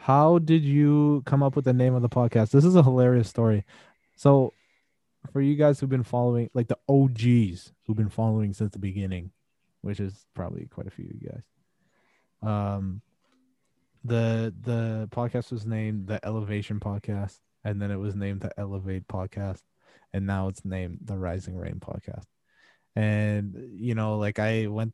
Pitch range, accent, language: 100-120 Hz, American, English